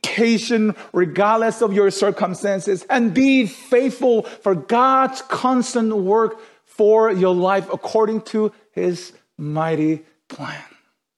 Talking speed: 105 wpm